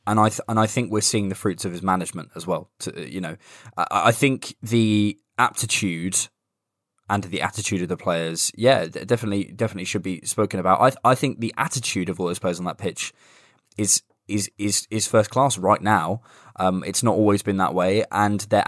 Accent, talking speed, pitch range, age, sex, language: British, 210 wpm, 95-110 Hz, 20-39, male, English